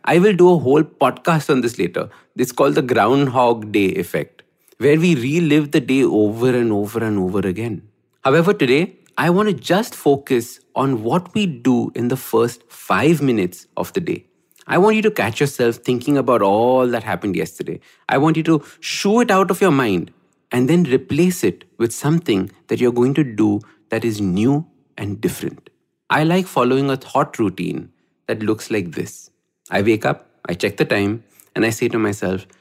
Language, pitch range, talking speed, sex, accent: English, 115-160 Hz, 195 wpm, male, Indian